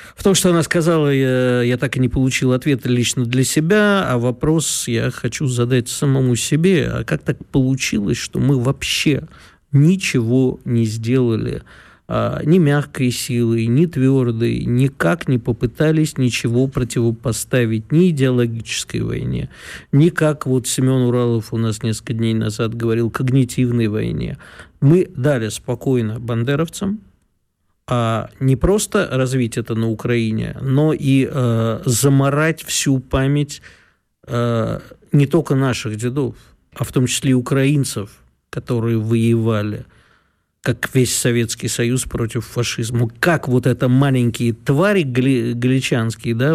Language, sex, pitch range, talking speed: Russian, male, 120-145 Hz, 135 wpm